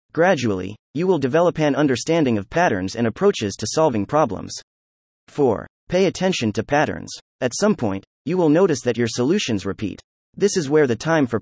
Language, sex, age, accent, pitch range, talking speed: English, male, 30-49, American, 105-165 Hz, 180 wpm